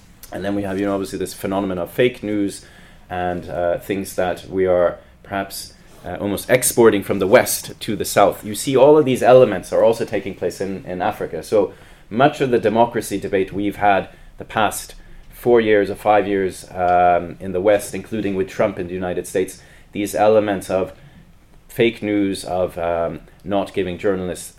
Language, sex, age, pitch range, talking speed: English, male, 30-49, 90-105 Hz, 190 wpm